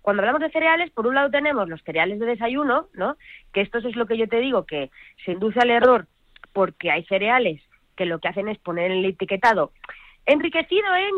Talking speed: 215 wpm